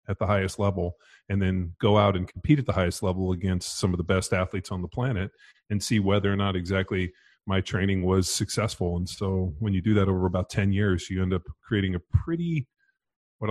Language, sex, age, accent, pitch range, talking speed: English, male, 30-49, American, 90-105 Hz, 220 wpm